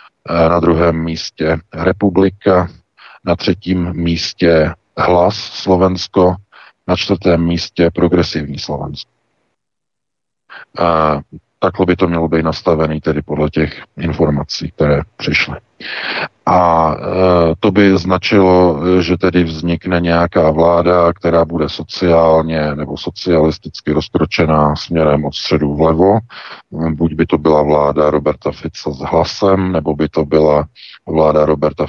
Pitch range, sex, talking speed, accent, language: 80-90 Hz, male, 115 wpm, native, Czech